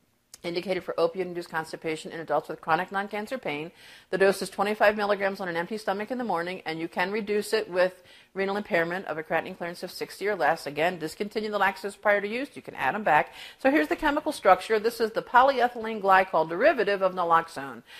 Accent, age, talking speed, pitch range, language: American, 50-69, 210 wpm, 165-215 Hz, English